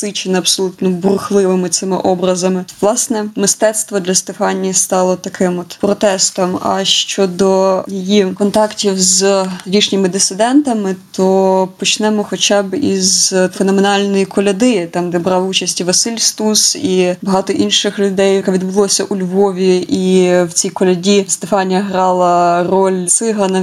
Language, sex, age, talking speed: Ukrainian, female, 20-39, 125 wpm